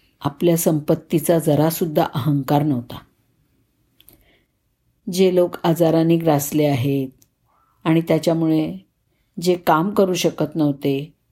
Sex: female